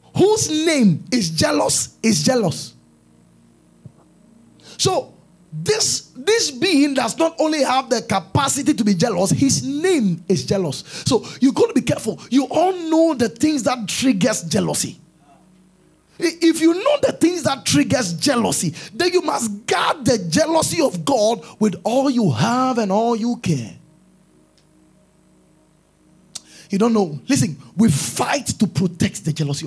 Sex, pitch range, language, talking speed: male, 175-275 Hz, English, 145 wpm